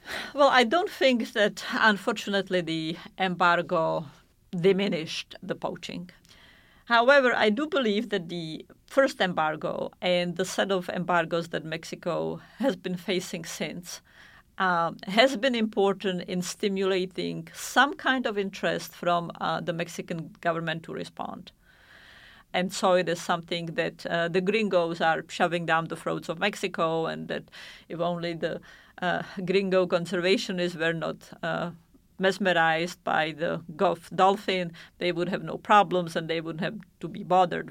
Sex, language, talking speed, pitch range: female, English, 145 wpm, 170-205 Hz